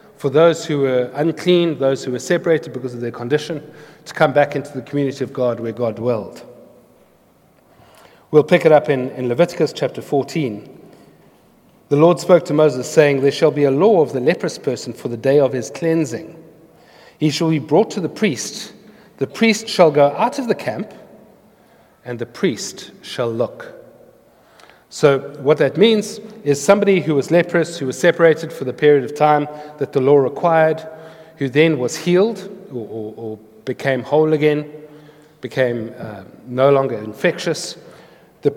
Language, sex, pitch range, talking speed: English, male, 130-165 Hz, 175 wpm